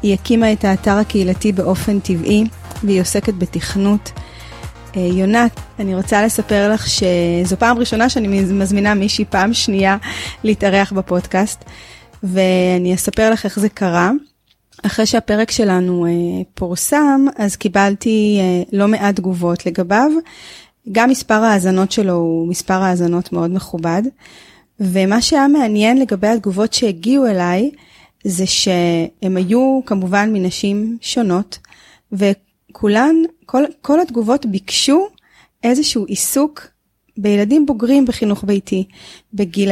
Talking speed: 115 wpm